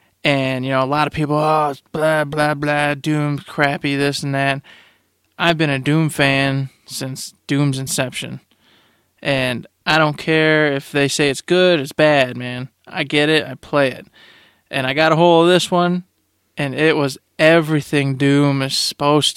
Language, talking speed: English, 180 wpm